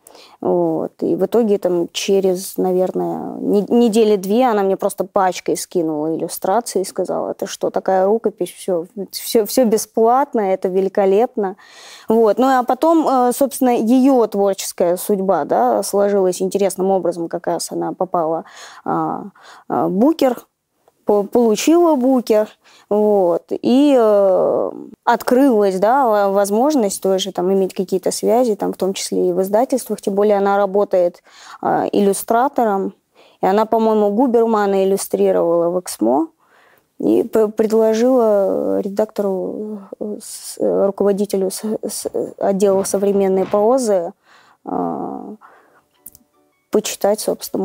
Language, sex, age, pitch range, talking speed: Russian, female, 20-39, 190-235 Hz, 105 wpm